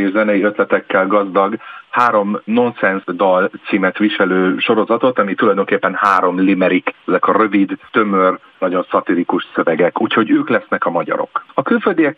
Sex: male